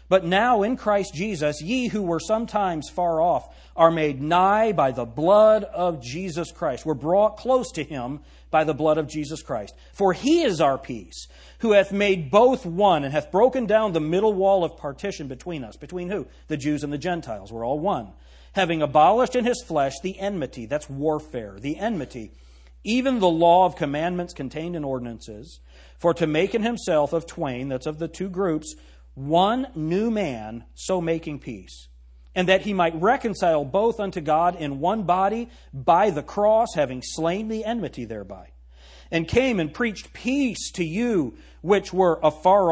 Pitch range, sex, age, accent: 135-195 Hz, male, 40-59, American